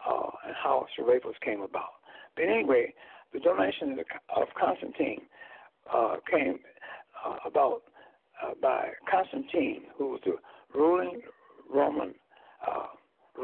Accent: American